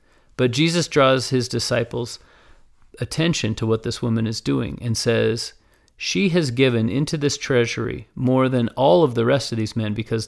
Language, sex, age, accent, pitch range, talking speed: English, male, 40-59, American, 115-135 Hz, 175 wpm